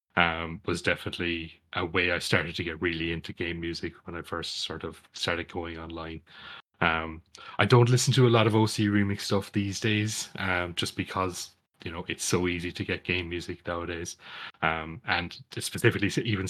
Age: 30-49